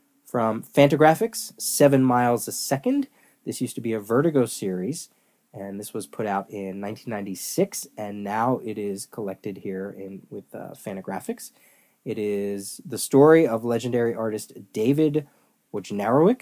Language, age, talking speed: English, 20-39, 145 wpm